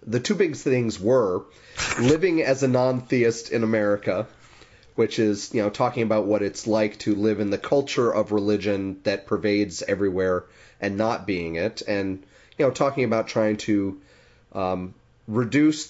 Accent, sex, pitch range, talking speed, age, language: American, male, 100-115 Hz, 160 wpm, 30-49, English